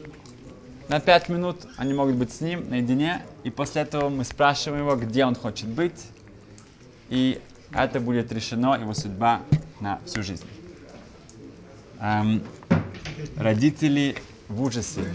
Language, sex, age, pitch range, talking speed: Russian, male, 20-39, 110-140 Hz, 125 wpm